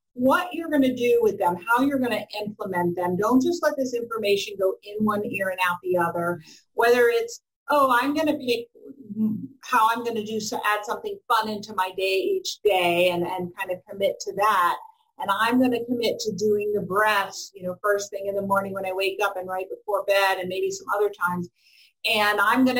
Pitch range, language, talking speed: 195-245 Hz, English, 225 wpm